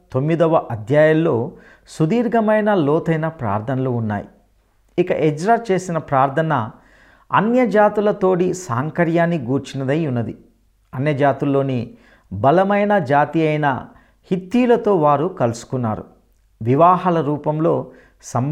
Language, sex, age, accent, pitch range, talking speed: English, male, 50-69, Indian, 115-175 Hz, 90 wpm